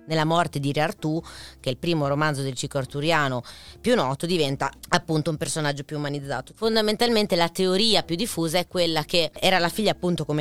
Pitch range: 140-180 Hz